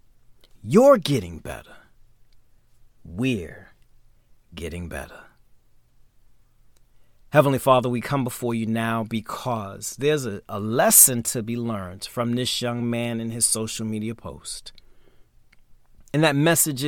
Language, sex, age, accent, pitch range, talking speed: English, male, 30-49, American, 110-145 Hz, 115 wpm